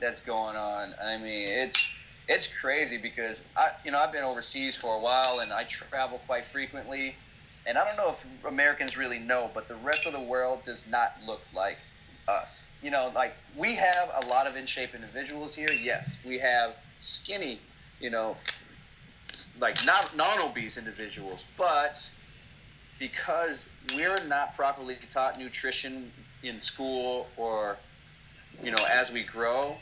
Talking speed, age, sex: 160 wpm, 30-49, male